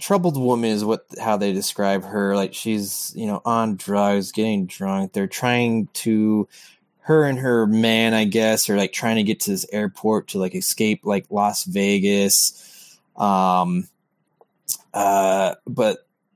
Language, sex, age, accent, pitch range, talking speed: English, male, 20-39, American, 105-155 Hz, 155 wpm